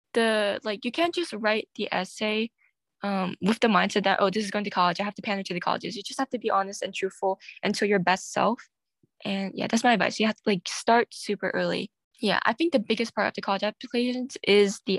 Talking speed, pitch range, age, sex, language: 250 wpm, 195-235 Hz, 10-29, female, English